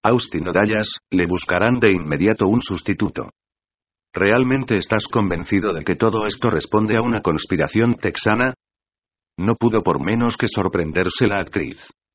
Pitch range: 95-115 Hz